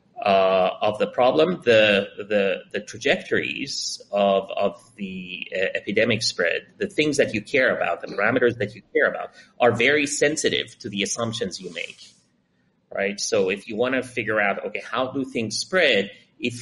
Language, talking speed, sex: Spanish, 175 wpm, male